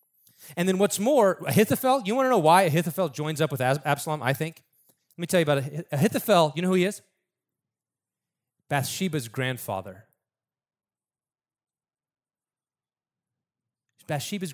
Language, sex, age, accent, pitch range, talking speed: English, male, 30-49, American, 125-175 Hz, 130 wpm